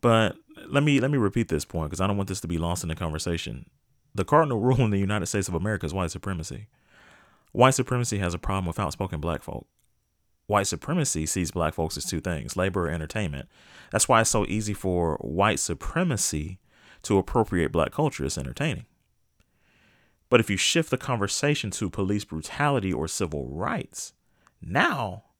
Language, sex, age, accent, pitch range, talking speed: English, male, 30-49, American, 85-110 Hz, 185 wpm